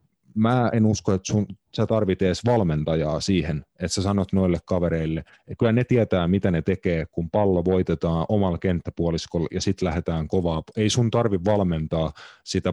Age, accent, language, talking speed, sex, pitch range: 30-49, native, Finnish, 170 wpm, male, 90-115 Hz